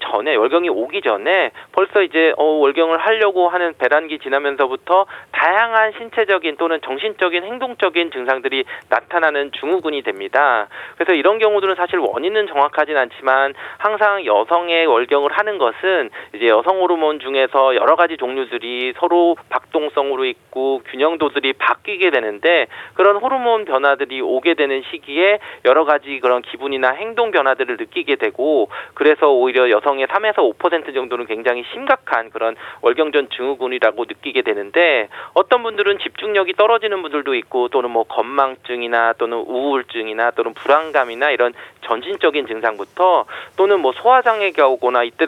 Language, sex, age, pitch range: Korean, male, 40-59, 130-205 Hz